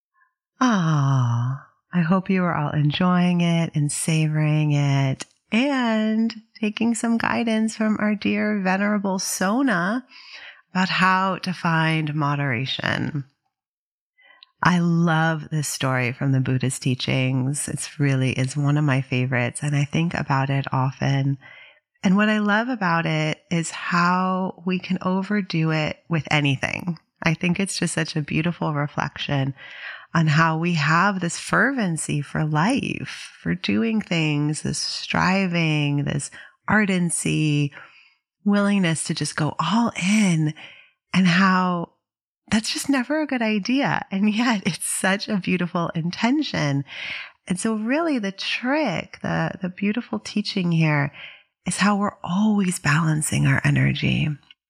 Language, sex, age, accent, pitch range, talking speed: English, female, 30-49, American, 150-210 Hz, 135 wpm